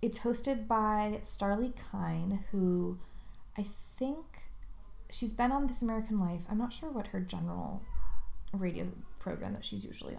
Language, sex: English, female